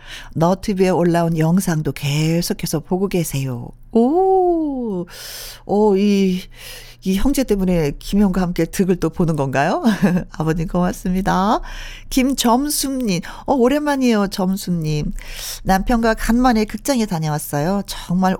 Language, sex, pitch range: Korean, female, 170-230 Hz